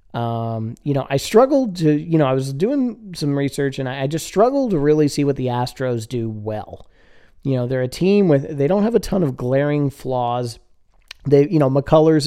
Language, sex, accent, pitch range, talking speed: English, male, American, 125-155 Hz, 215 wpm